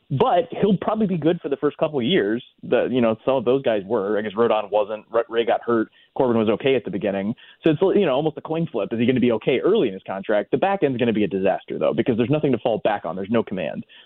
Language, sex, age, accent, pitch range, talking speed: English, male, 20-39, American, 115-150 Hz, 295 wpm